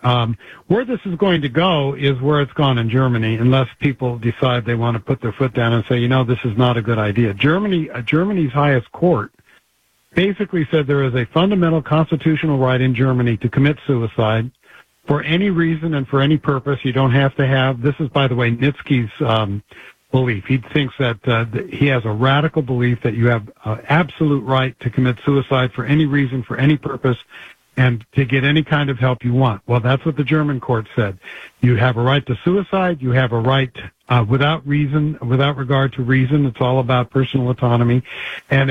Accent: American